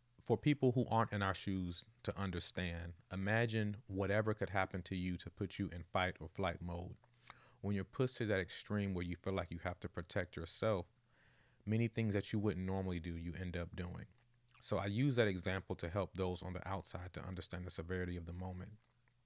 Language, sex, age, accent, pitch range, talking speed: English, male, 30-49, American, 90-115 Hz, 205 wpm